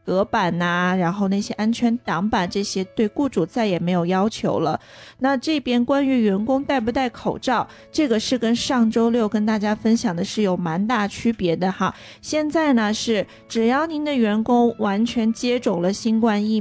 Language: Chinese